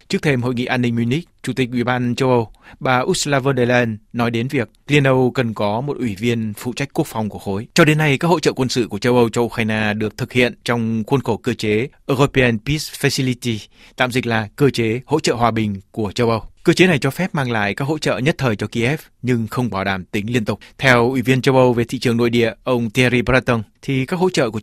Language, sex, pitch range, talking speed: Vietnamese, male, 115-135 Hz, 265 wpm